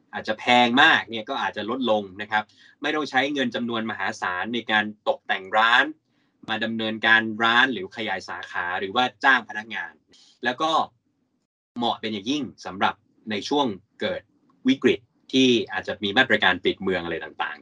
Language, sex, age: Thai, male, 20-39